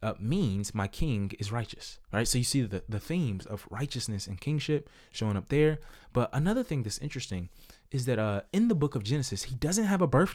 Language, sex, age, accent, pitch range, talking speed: English, male, 20-39, American, 115-195 Hz, 220 wpm